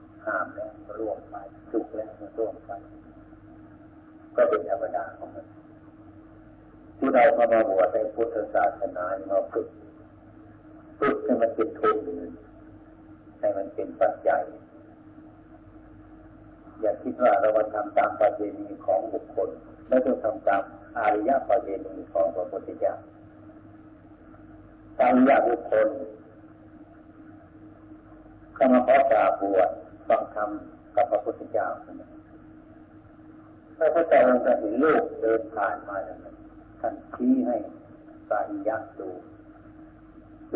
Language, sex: Thai, male